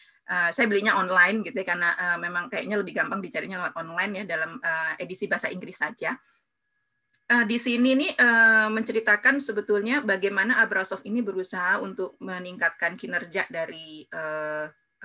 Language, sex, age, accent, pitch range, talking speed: English, female, 20-39, Indonesian, 190-240 Hz, 145 wpm